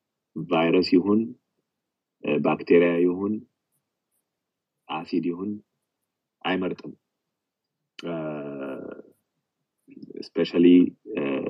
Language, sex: English, male